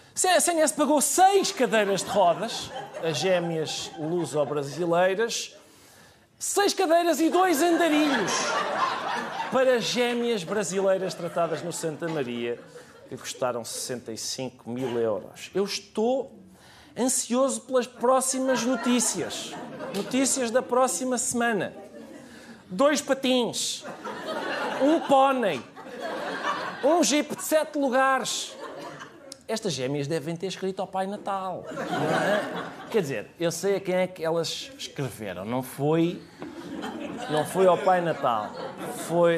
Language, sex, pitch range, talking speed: Portuguese, male, 155-260 Hz, 110 wpm